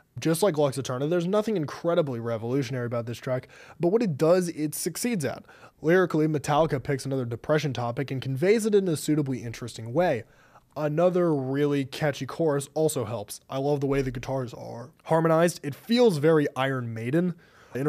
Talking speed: 175 wpm